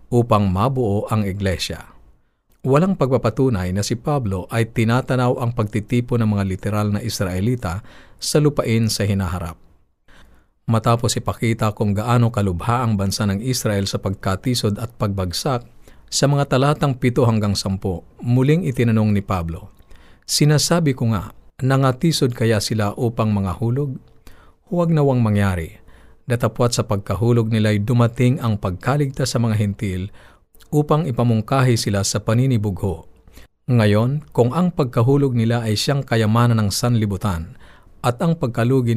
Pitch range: 100-125 Hz